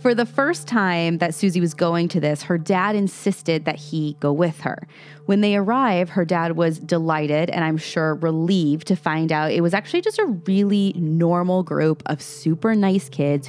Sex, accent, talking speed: female, American, 195 wpm